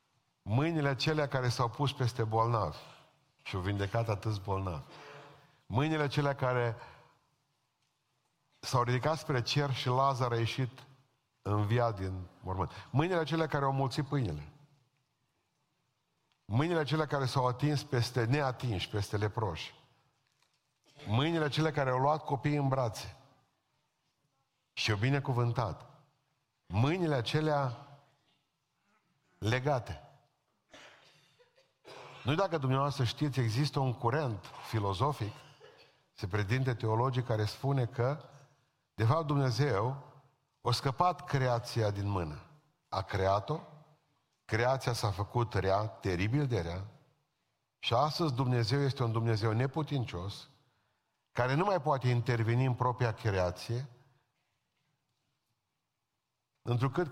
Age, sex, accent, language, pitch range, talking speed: 50-69, male, native, Romanian, 115-145 Hz, 110 wpm